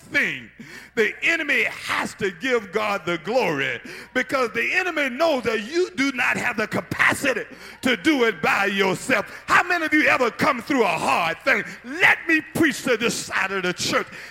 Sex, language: male, English